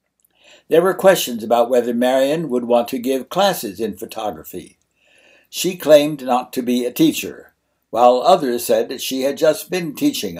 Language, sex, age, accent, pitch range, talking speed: English, male, 60-79, American, 120-165 Hz, 165 wpm